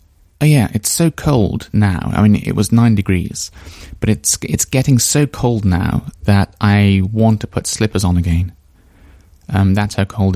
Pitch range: 85-110 Hz